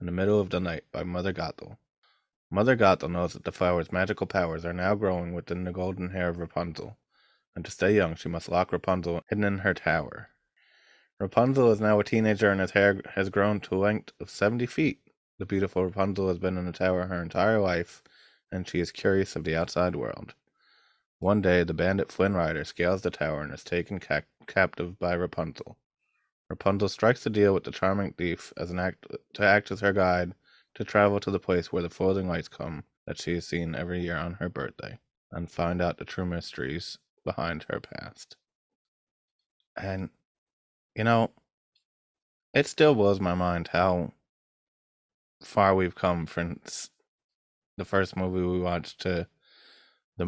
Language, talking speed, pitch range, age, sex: English, 180 wpm, 85-100 Hz, 20-39, male